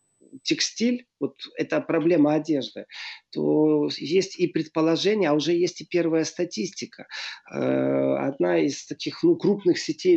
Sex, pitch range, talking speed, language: male, 145-195 Hz, 130 wpm, Russian